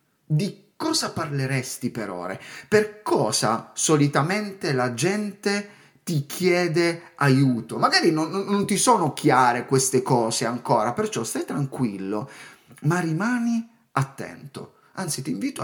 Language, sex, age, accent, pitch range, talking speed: Italian, male, 30-49, native, 125-175 Hz, 120 wpm